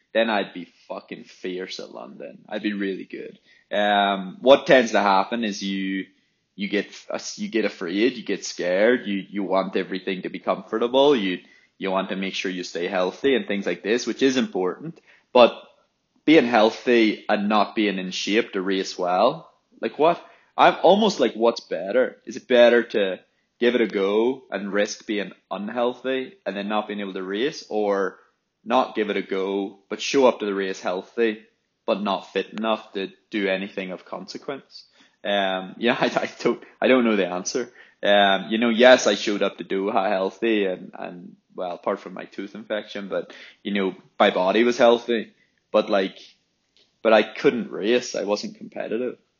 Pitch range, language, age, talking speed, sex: 95-115 Hz, English, 20-39, 190 wpm, male